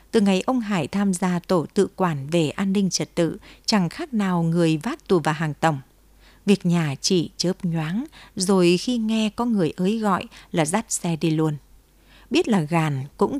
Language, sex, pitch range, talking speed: Vietnamese, female, 165-210 Hz, 195 wpm